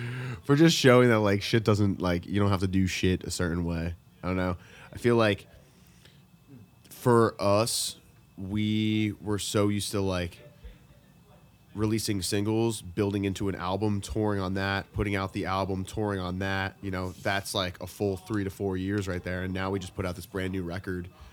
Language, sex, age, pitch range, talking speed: English, male, 20-39, 90-105 Hz, 195 wpm